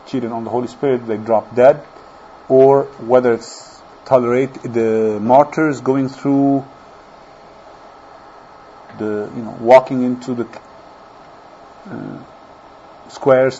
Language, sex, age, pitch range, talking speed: English, male, 40-59, 120-135 Hz, 105 wpm